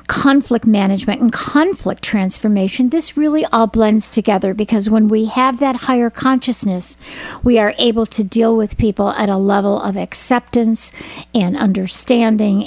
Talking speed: 145 wpm